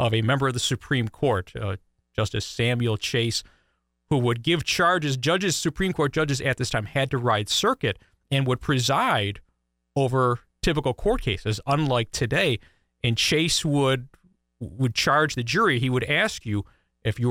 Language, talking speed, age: English, 165 wpm, 40-59